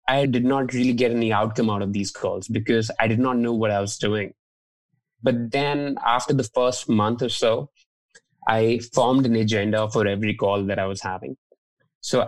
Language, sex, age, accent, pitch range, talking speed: English, male, 20-39, Indian, 105-120 Hz, 195 wpm